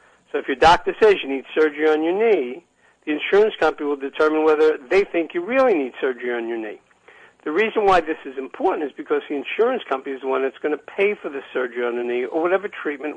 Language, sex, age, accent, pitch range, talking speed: English, male, 60-79, American, 150-250 Hz, 240 wpm